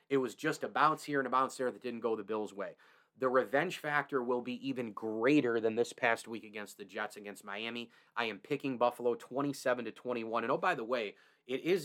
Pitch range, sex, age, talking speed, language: 115-145 Hz, male, 30-49, 235 wpm, English